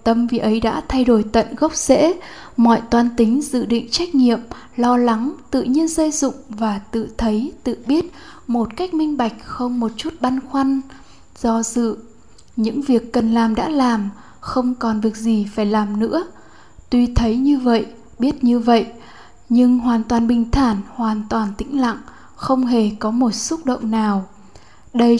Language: Vietnamese